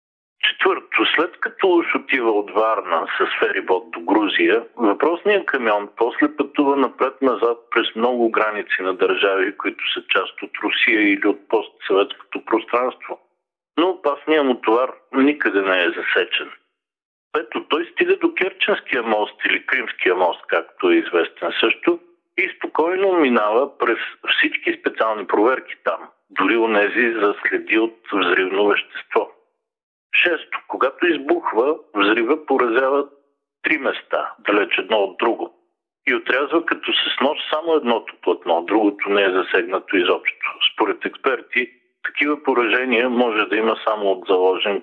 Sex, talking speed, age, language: male, 130 wpm, 50-69, Bulgarian